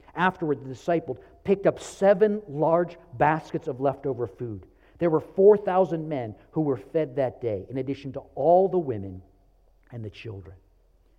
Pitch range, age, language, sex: 135-200 Hz, 50-69, English, male